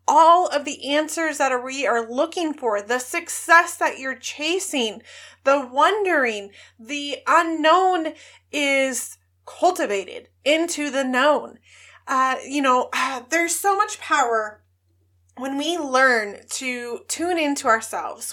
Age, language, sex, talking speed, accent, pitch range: 20-39, English, female, 120 wpm, American, 235-320 Hz